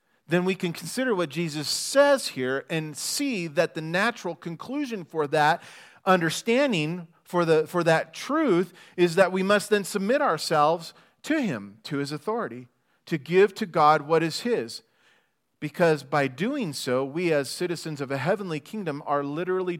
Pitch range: 135-175 Hz